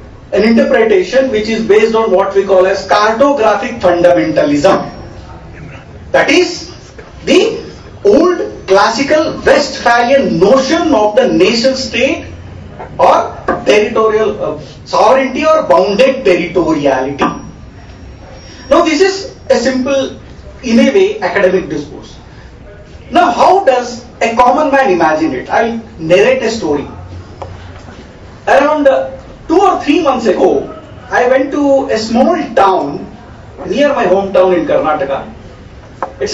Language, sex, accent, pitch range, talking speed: English, male, Indian, 165-275 Hz, 115 wpm